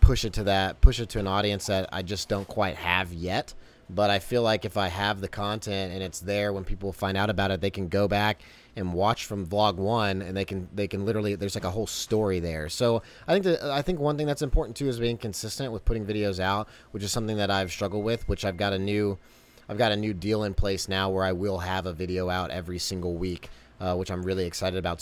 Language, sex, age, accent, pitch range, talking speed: English, male, 30-49, American, 90-105 Hz, 260 wpm